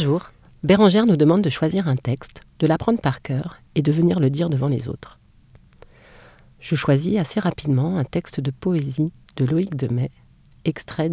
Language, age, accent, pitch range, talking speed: French, 40-59, French, 130-160 Hz, 175 wpm